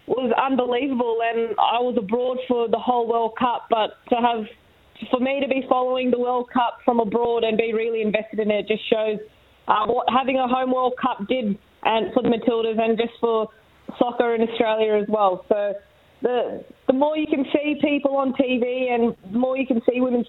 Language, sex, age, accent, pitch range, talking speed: English, female, 20-39, Australian, 215-245 Hz, 205 wpm